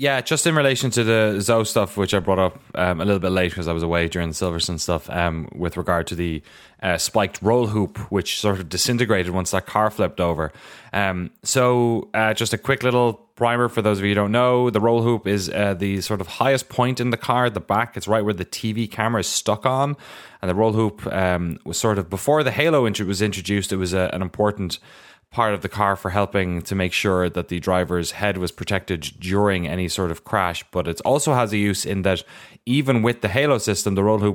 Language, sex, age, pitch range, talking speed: English, male, 20-39, 90-110 Hz, 230 wpm